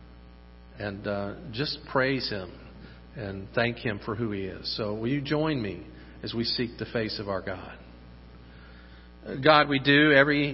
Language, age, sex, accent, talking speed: English, 50-69, male, American, 165 wpm